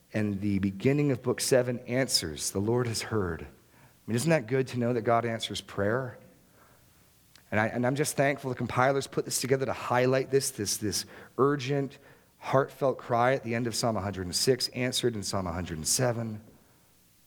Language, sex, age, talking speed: English, male, 40-59, 175 wpm